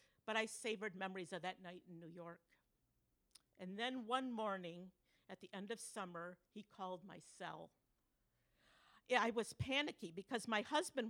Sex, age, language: female, 50-69, English